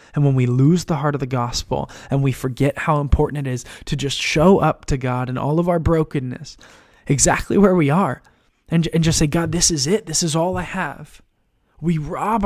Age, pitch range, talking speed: 20-39, 145-175 Hz, 220 wpm